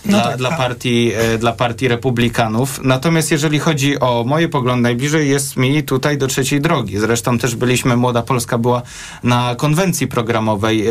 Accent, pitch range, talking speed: native, 115-145 Hz, 145 wpm